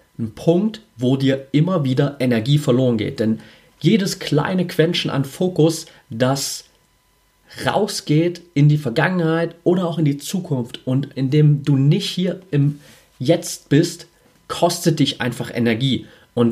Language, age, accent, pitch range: German, 30-49, German, 130-165 Hz